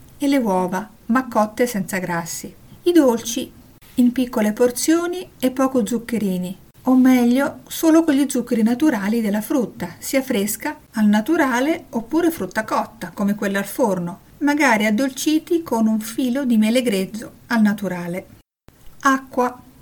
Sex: female